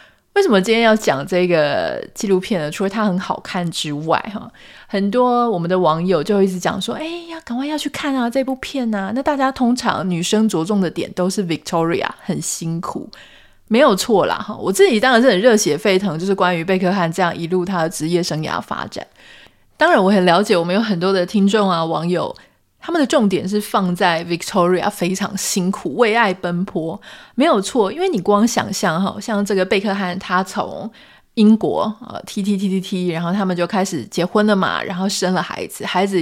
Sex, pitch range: female, 180-235 Hz